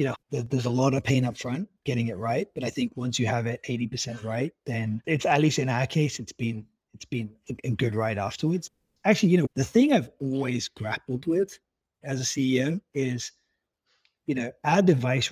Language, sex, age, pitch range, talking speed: English, male, 30-49, 115-140 Hz, 200 wpm